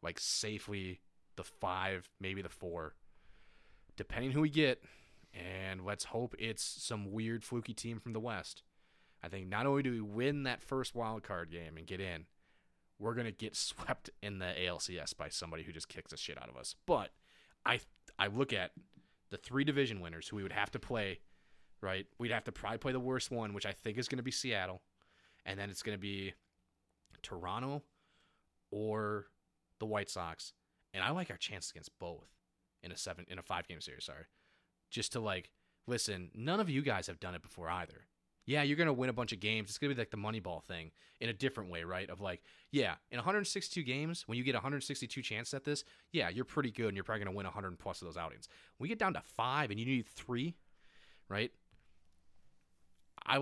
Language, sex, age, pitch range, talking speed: English, male, 30-49, 95-125 Hz, 215 wpm